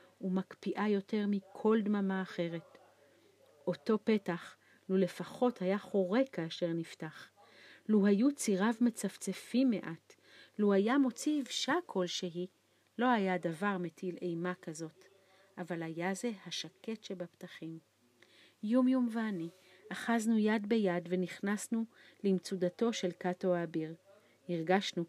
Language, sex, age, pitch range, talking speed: Hebrew, female, 40-59, 175-215 Hz, 110 wpm